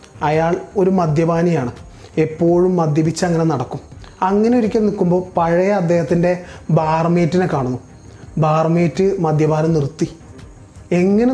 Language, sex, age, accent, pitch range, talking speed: Malayalam, male, 20-39, native, 140-175 Hz, 90 wpm